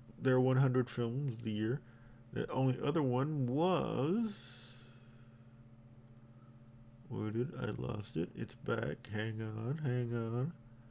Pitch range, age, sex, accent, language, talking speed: 120-150 Hz, 40-59, male, American, English, 120 wpm